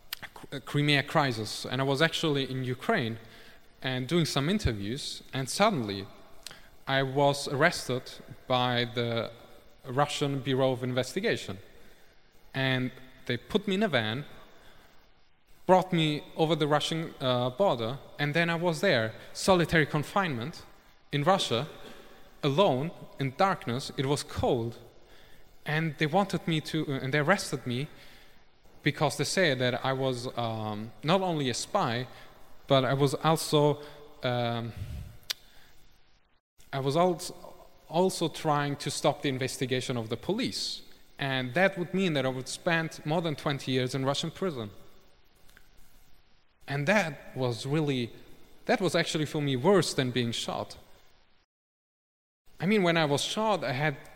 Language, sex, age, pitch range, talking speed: English, male, 20-39, 125-165 Hz, 140 wpm